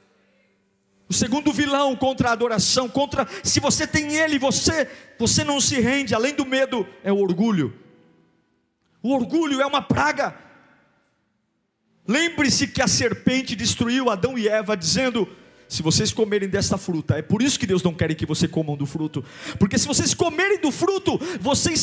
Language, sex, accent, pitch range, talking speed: Portuguese, male, Brazilian, 195-300 Hz, 165 wpm